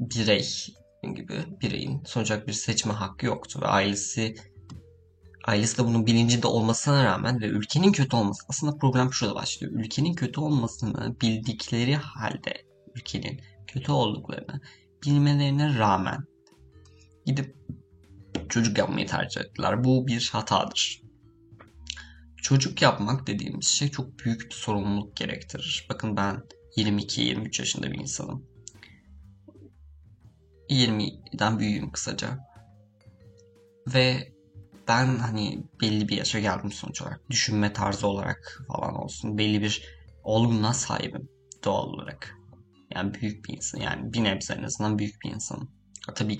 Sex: male